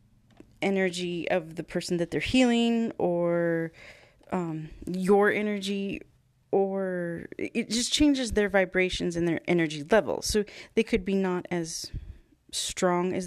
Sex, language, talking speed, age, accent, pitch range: female, English, 130 wpm, 30-49, American, 165-215 Hz